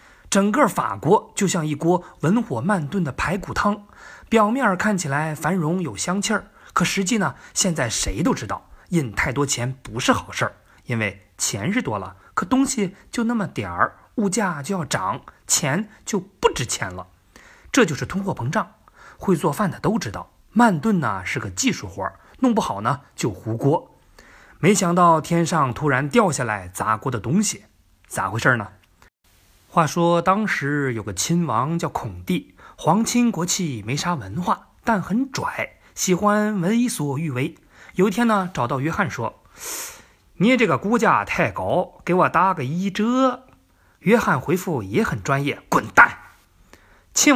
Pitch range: 135-205 Hz